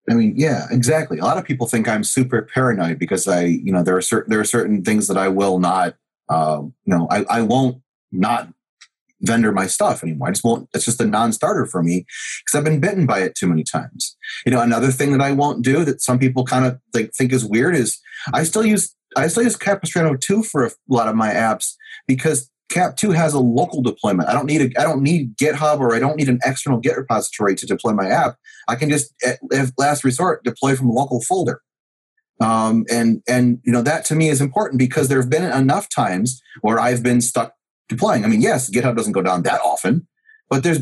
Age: 30-49